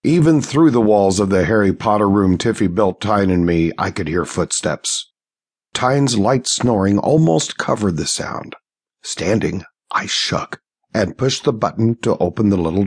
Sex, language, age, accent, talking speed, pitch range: male, English, 50-69, American, 170 wpm, 95-130 Hz